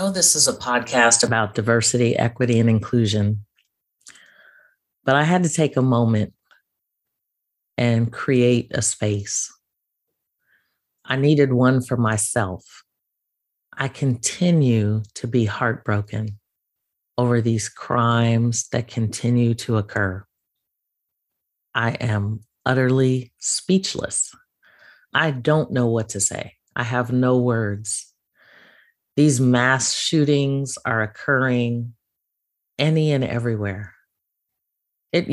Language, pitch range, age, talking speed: English, 115-145 Hz, 40-59, 105 wpm